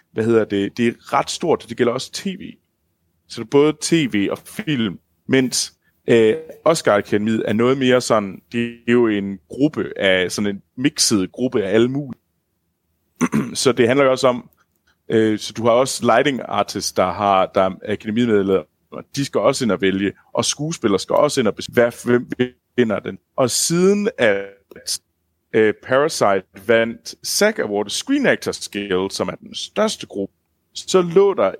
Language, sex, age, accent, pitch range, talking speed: Danish, male, 30-49, native, 100-125 Hz, 170 wpm